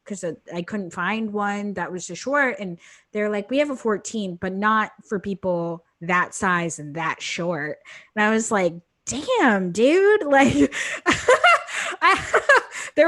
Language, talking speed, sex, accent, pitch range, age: English, 150 wpm, female, American, 195-260 Hz, 20-39